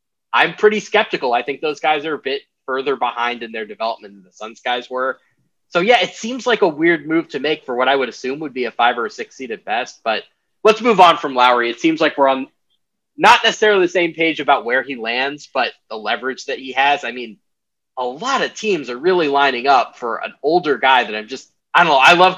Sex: male